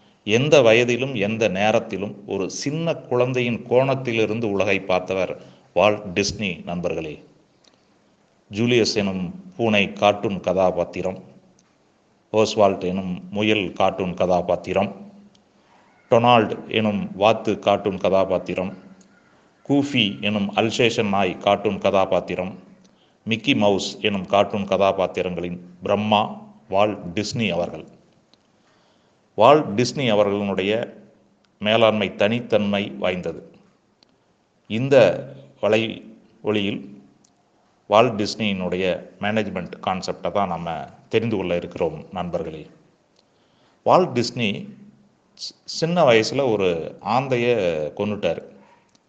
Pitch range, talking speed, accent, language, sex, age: 95-120 Hz, 85 wpm, native, Tamil, male, 30-49